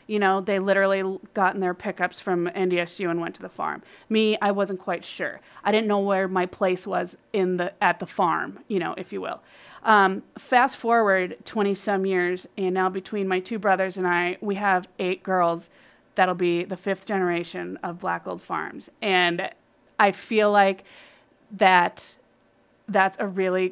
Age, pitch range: 30-49, 180-205 Hz